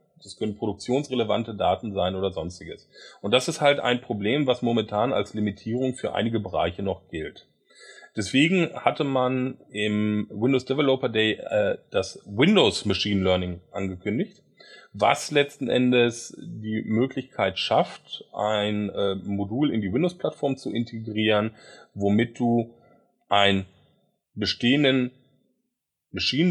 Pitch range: 105-130 Hz